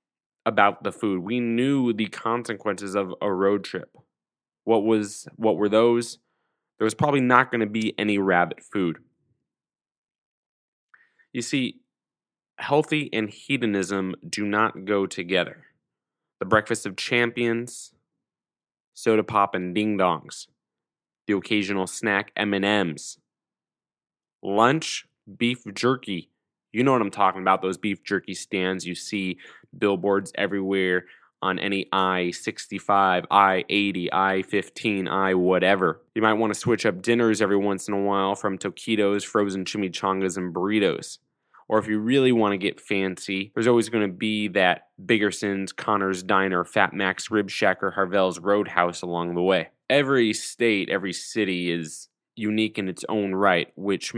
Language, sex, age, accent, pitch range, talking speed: English, male, 20-39, American, 95-110 Hz, 140 wpm